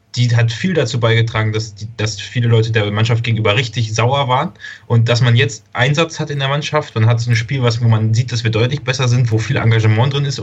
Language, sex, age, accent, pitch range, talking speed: German, male, 30-49, German, 110-125 Hz, 250 wpm